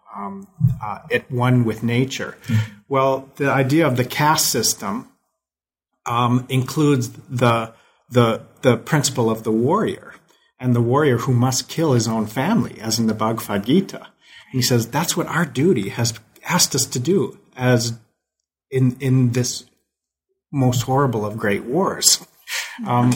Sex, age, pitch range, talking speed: male, 40-59, 115-135 Hz, 150 wpm